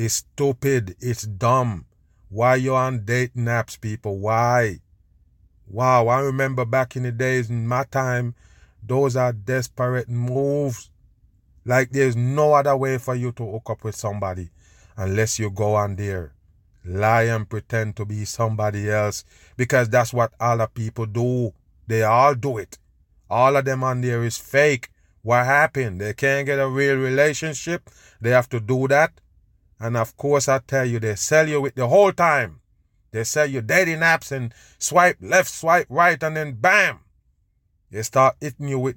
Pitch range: 105-130 Hz